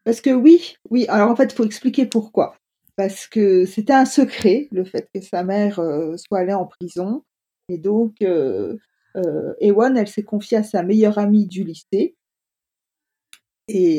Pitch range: 180-225 Hz